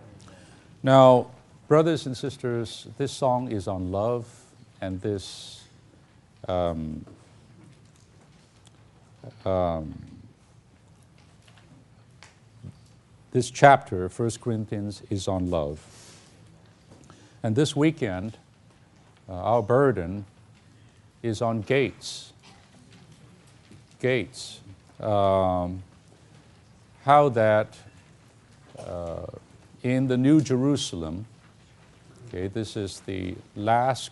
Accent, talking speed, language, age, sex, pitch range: American, 75 wpm, English, 50-69, male, 105-130 Hz